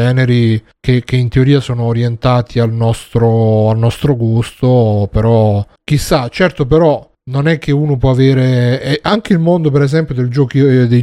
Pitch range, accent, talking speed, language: 120-145 Hz, native, 170 wpm, Italian